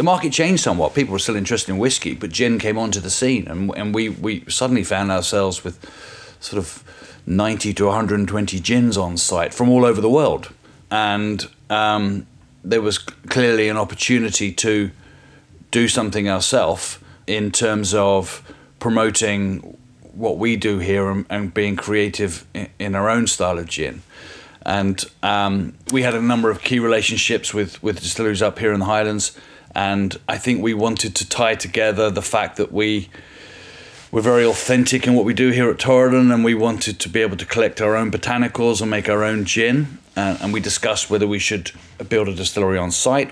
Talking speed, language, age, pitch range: 185 wpm, English, 40-59, 100-115 Hz